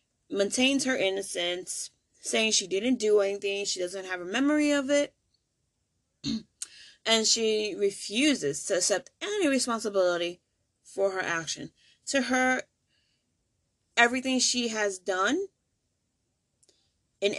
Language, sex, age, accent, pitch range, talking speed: English, female, 20-39, American, 185-250 Hz, 110 wpm